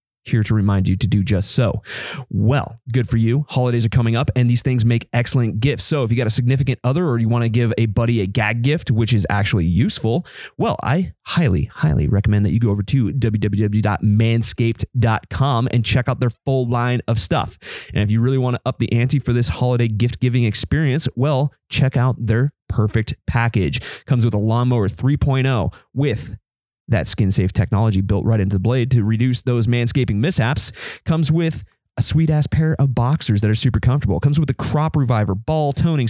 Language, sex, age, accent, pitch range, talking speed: English, male, 30-49, American, 110-130 Hz, 205 wpm